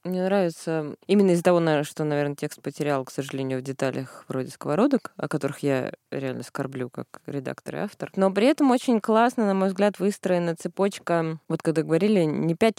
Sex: female